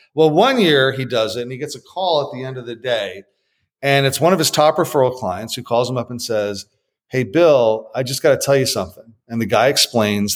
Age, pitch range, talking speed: 40-59, 115-150 Hz, 255 wpm